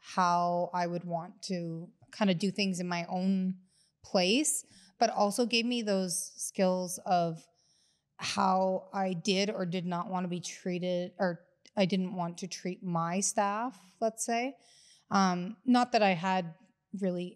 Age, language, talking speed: 30-49, English, 160 wpm